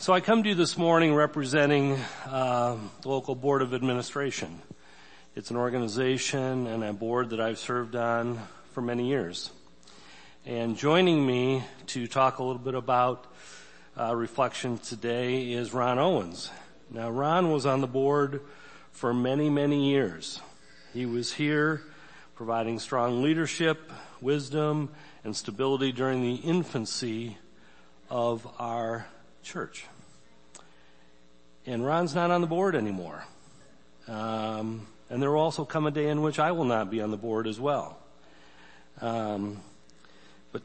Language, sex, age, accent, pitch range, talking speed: English, male, 40-59, American, 115-145 Hz, 140 wpm